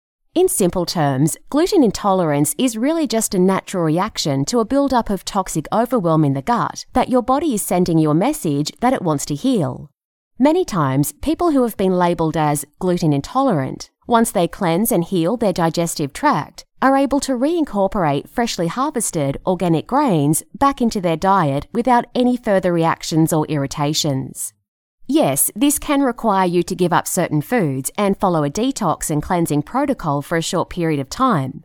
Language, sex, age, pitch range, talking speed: English, female, 30-49, 155-245 Hz, 175 wpm